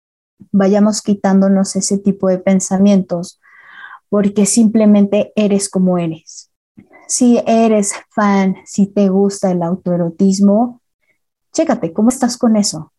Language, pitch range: Spanish, 195-245 Hz